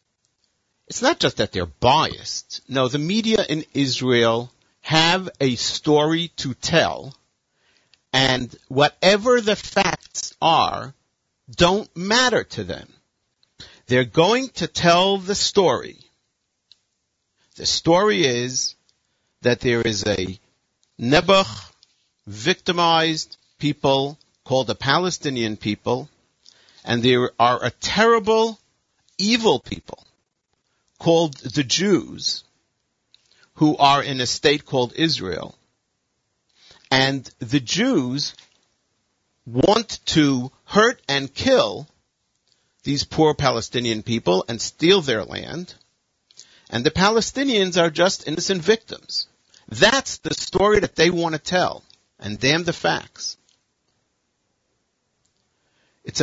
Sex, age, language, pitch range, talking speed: male, 50-69, English, 125-180 Hz, 105 wpm